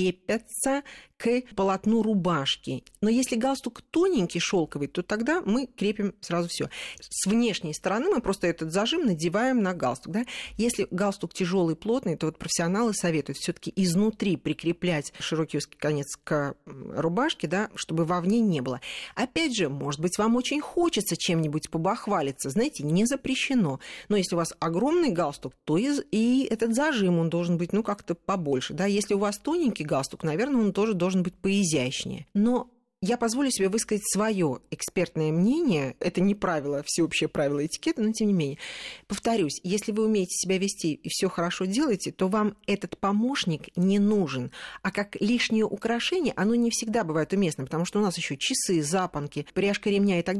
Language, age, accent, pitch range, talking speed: Russian, 40-59, native, 170-225 Hz, 165 wpm